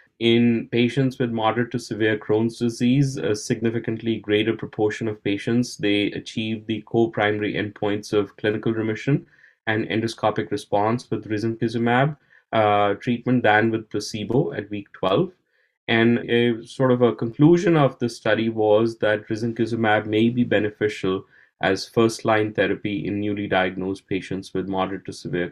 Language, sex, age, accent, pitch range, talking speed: English, male, 30-49, Indian, 105-120 Hz, 145 wpm